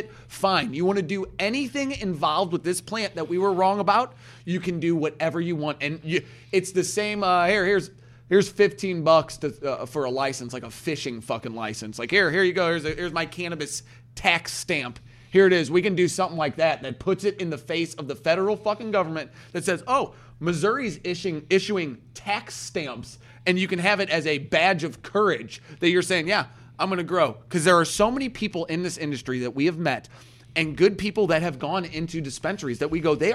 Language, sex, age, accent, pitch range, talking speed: English, male, 30-49, American, 130-195 Hz, 225 wpm